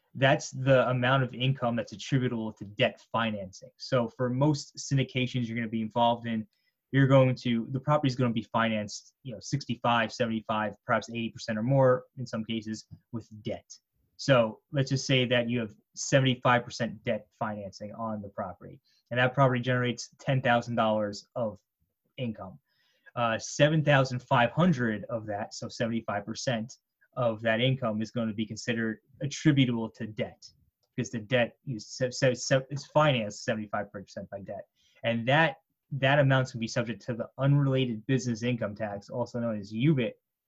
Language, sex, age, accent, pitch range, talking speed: English, male, 20-39, American, 115-135 Hz, 155 wpm